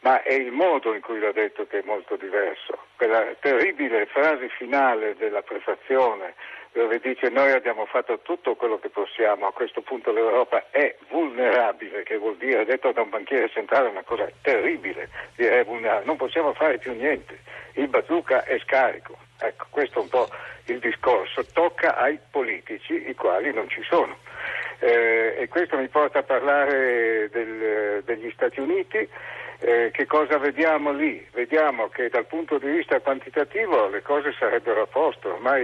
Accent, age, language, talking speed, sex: native, 60-79, Italian, 165 wpm, male